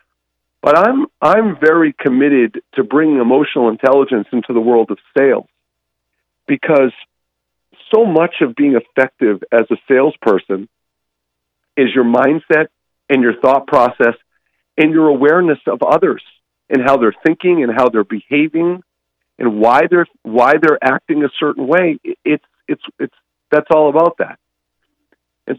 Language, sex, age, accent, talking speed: English, male, 50-69, American, 145 wpm